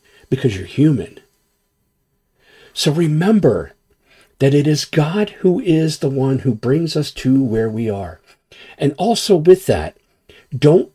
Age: 50-69